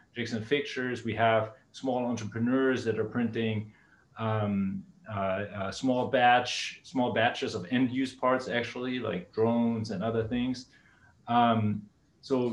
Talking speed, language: 135 wpm, English